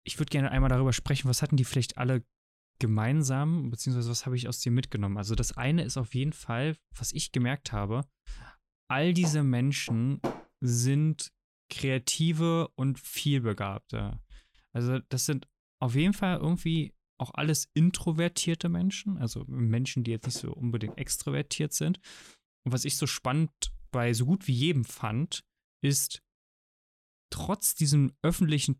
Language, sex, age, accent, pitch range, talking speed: German, male, 20-39, German, 115-150 Hz, 150 wpm